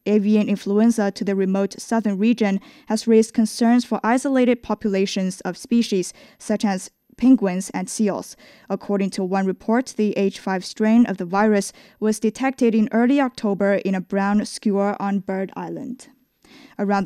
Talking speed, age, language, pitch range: 150 wpm, 10-29, English, 200-245 Hz